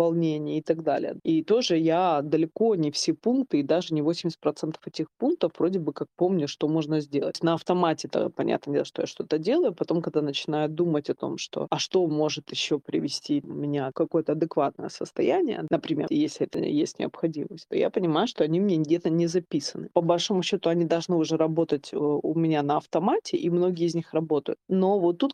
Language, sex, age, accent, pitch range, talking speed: Russian, female, 20-39, native, 150-180 Hz, 195 wpm